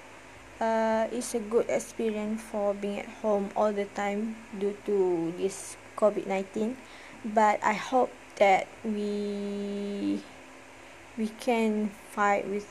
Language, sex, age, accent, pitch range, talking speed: English, female, 20-39, Malaysian, 200-230 Hz, 125 wpm